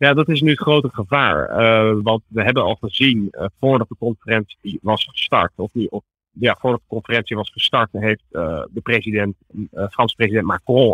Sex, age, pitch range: male, 40-59, 100-120 Hz